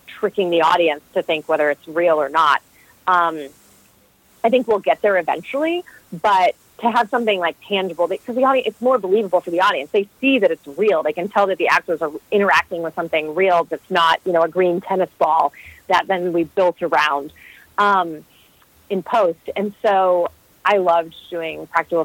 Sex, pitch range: female, 160-205 Hz